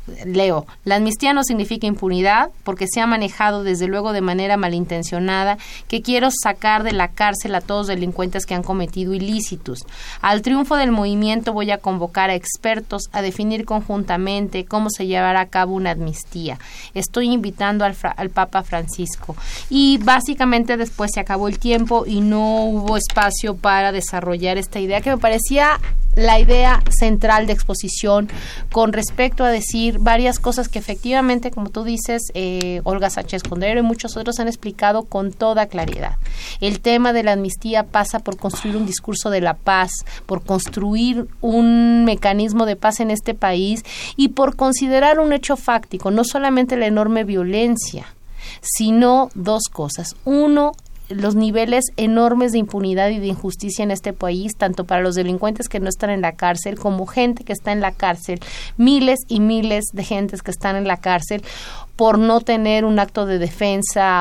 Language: Spanish